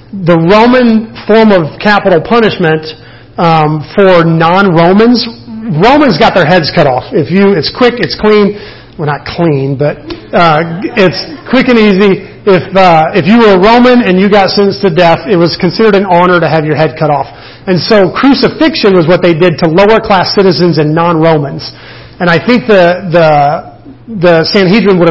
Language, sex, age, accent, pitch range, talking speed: English, male, 40-59, American, 160-200 Hz, 175 wpm